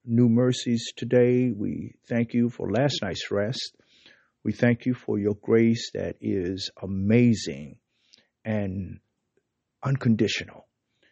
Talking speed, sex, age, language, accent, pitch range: 115 wpm, male, 50-69, English, American, 105-125 Hz